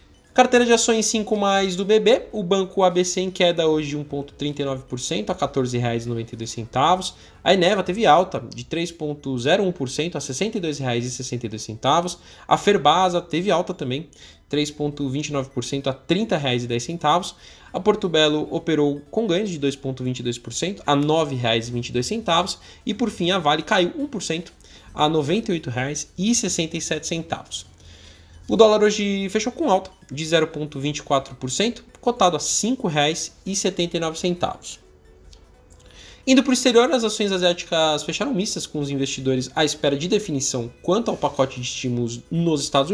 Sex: male